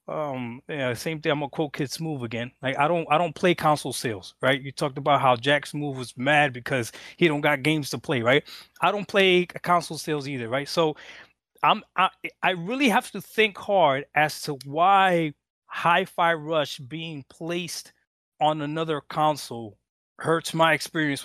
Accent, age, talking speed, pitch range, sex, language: American, 20-39, 180 wpm, 145-195 Hz, male, English